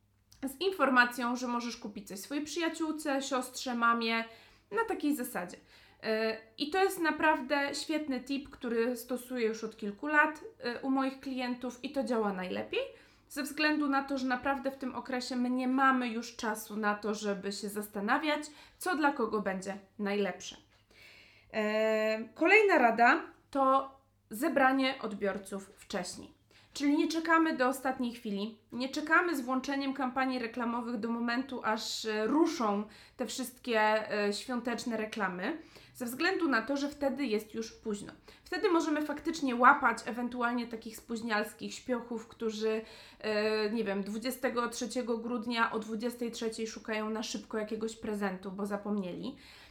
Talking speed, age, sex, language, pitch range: 135 wpm, 20-39, female, Polish, 220-275 Hz